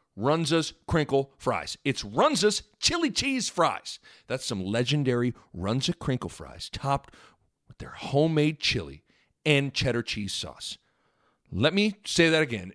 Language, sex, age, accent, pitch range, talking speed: English, male, 40-59, American, 120-170 Hz, 130 wpm